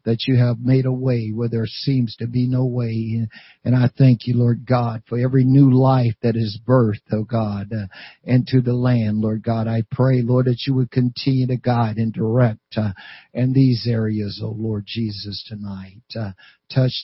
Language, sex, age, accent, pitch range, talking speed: English, male, 60-79, American, 110-125 Hz, 195 wpm